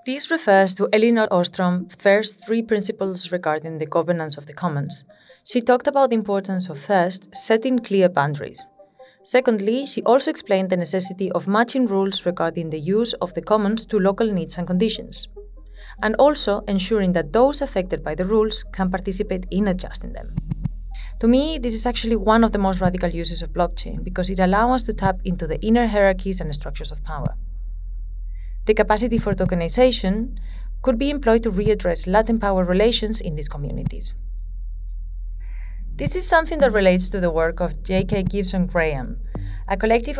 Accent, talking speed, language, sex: Spanish, 170 wpm, English, female